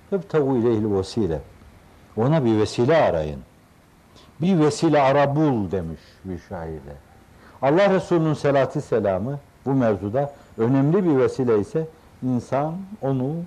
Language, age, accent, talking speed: Turkish, 60-79, native, 105 wpm